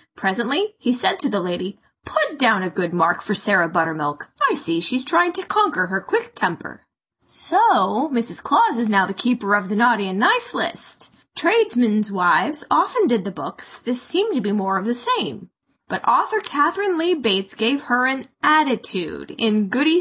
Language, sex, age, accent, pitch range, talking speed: English, female, 20-39, American, 215-320 Hz, 185 wpm